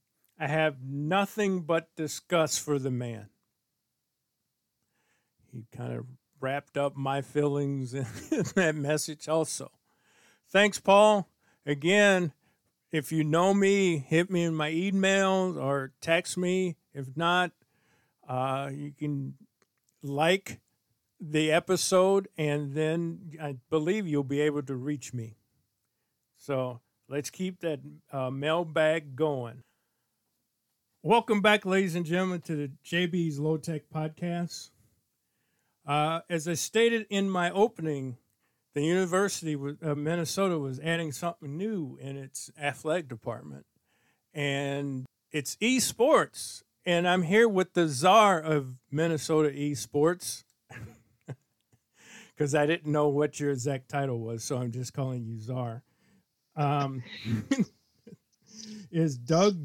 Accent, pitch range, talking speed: American, 135-175 Hz, 120 wpm